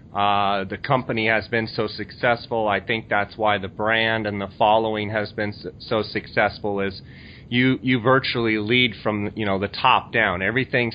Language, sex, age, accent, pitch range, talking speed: English, male, 30-49, American, 105-115 Hz, 175 wpm